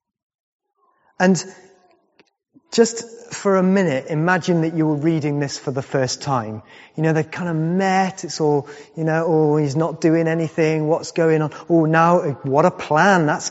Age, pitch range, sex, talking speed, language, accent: 30-49, 155-195 Hz, male, 175 wpm, English, British